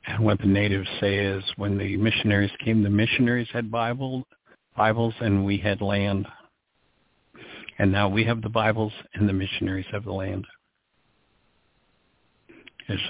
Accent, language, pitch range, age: American, English, 100-110 Hz, 60-79